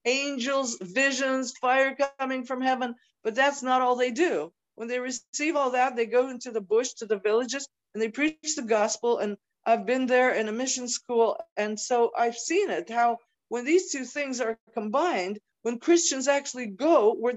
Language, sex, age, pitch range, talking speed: English, female, 50-69, 220-275 Hz, 190 wpm